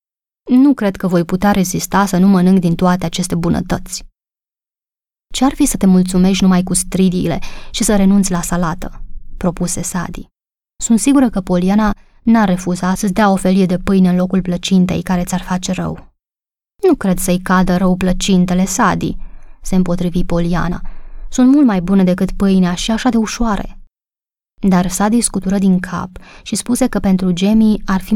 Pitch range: 180-205 Hz